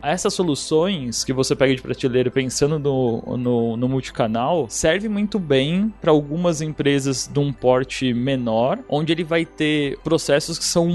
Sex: male